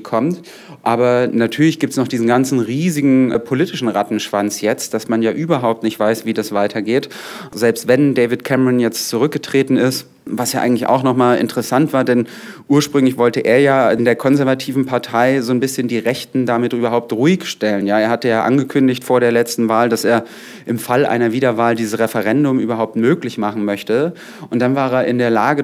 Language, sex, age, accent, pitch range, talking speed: German, male, 30-49, German, 115-135 Hz, 185 wpm